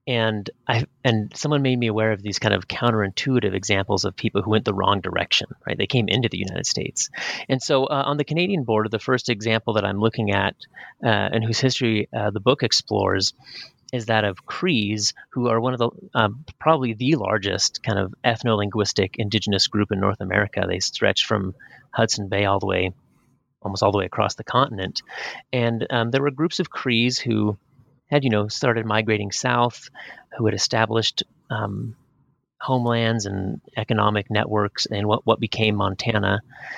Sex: male